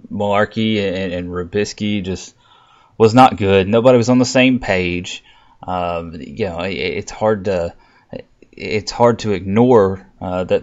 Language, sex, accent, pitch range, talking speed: English, male, American, 90-105 Hz, 160 wpm